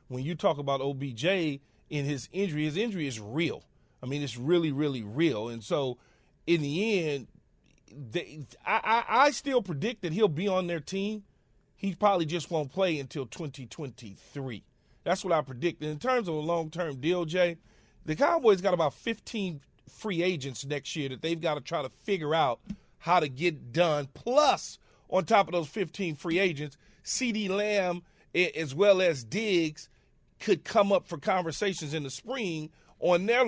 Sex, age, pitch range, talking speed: male, 30-49, 150-190 Hz, 175 wpm